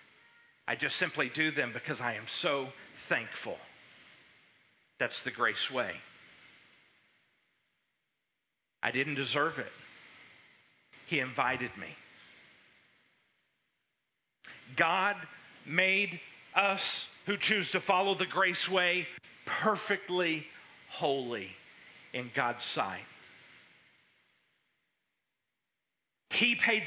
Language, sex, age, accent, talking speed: English, male, 40-59, American, 85 wpm